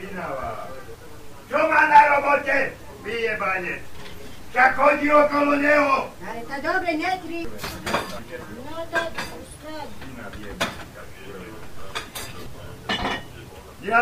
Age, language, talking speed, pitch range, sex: 60-79, Slovak, 45 wpm, 190-285 Hz, male